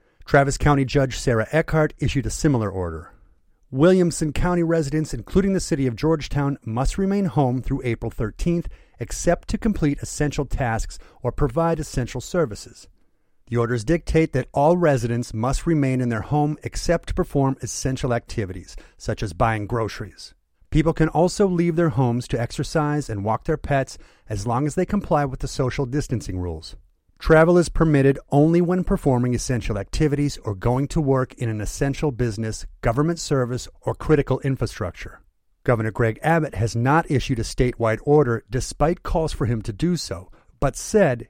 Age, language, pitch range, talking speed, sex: 40-59, English, 115-155 Hz, 165 wpm, male